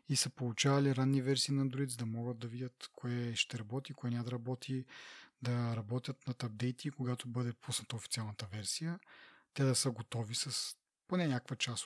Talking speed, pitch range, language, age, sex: 180 wpm, 125-150 Hz, Bulgarian, 30-49, male